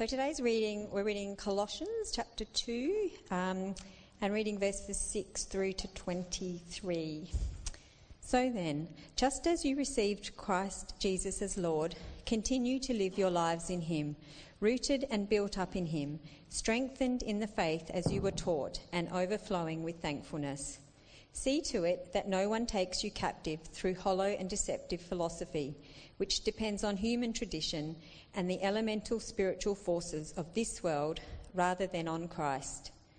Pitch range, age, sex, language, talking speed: 165-215 Hz, 40-59, female, English, 145 wpm